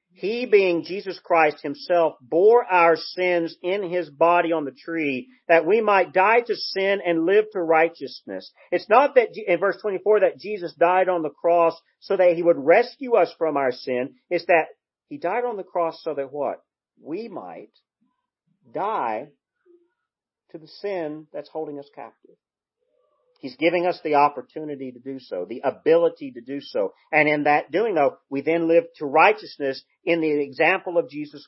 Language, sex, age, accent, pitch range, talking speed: English, male, 40-59, American, 155-250 Hz, 175 wpm